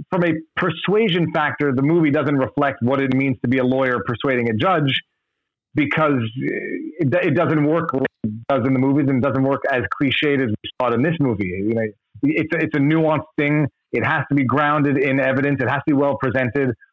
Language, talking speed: English, 215 wpm